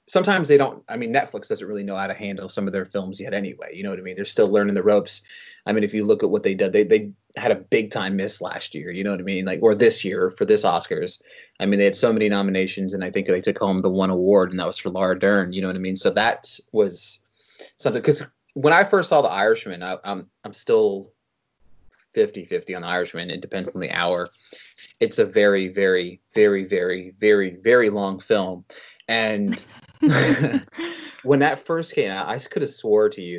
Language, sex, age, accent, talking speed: English, male, 30-49, American, 235 wpm